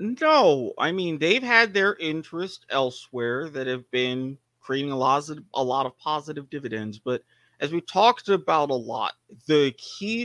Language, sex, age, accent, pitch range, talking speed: English, male, 30-49, American, 140-215 Hz, 170 wpm